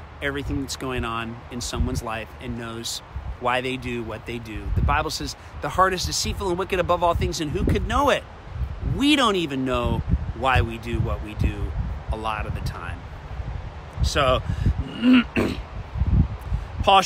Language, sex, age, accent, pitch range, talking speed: English, male, 40-59, American, 95-150 Hz, 170 wpm